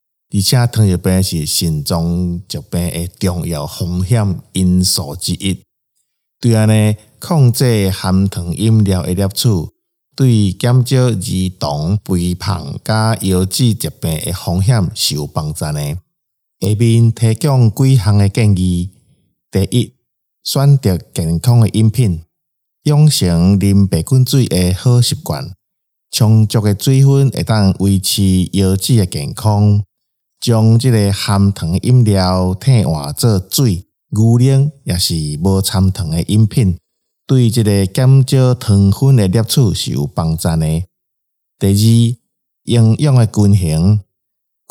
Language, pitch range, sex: Chinese, 90-120 Hz, male